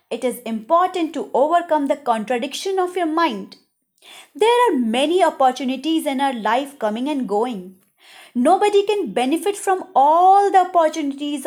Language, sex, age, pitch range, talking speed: Hindi, female, 20-39, 255-370 Hz, 140 wpm